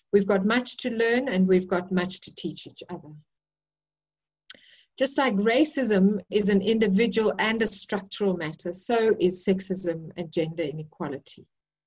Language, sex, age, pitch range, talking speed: English, female, 50-69, 185-225 Hz, 145 wpm